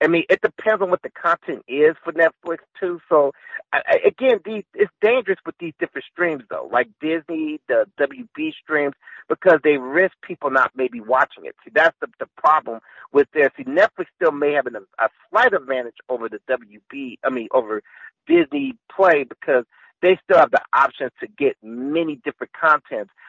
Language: English